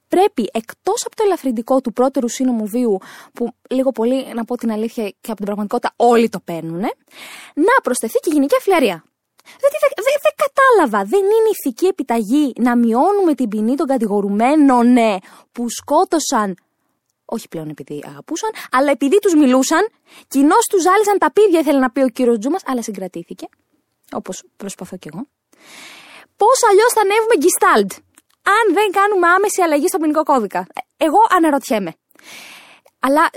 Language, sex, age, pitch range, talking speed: Greek, female, 20-39, 200-295 Hz, 150 wpm